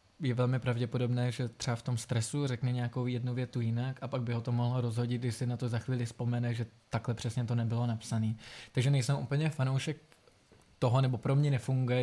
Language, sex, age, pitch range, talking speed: Czech, male, 20-39, 120-135 Hz, 210 wpm